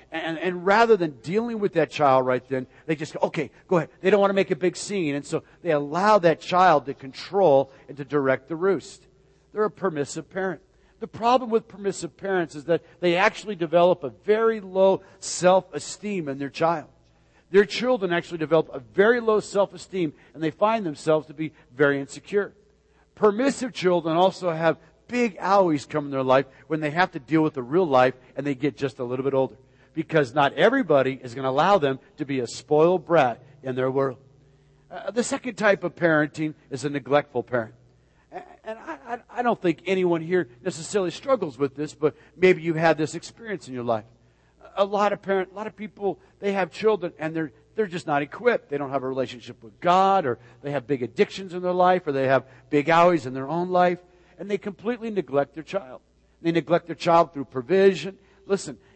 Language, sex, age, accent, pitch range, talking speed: English, male, 50-69, American, 140-195 Hz, 205 wpm